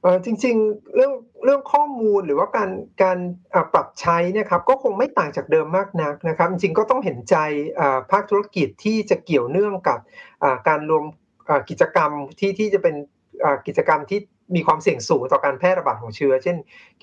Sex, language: male, Thai